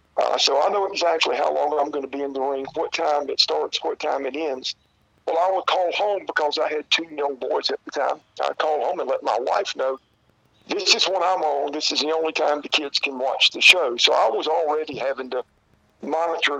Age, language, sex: 50-69, English, male